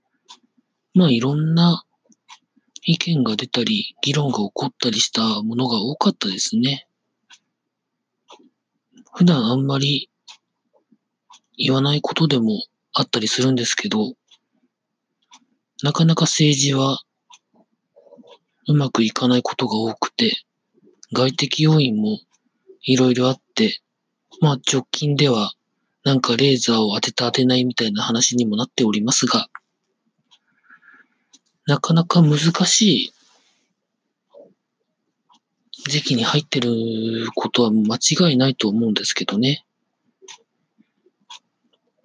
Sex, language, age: male, Japanese, 40-59